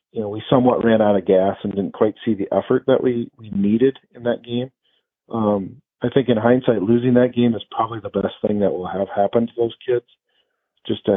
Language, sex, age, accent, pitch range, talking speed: English, male, 40-59, American, 105-130 Hz, 230 wpm